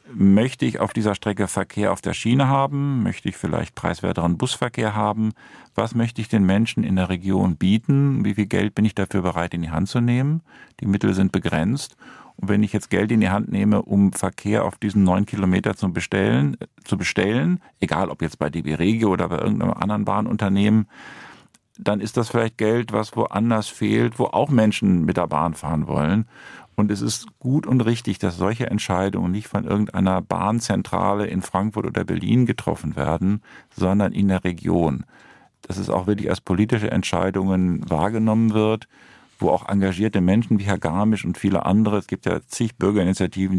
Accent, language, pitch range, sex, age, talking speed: German, German, 95-110 Hz, male, 50-69, 180 wpm